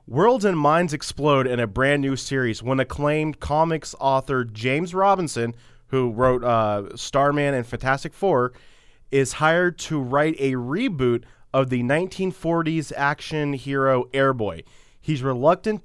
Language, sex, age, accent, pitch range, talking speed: English, male, 20-39, American, 115-140 Hz, 135 wpm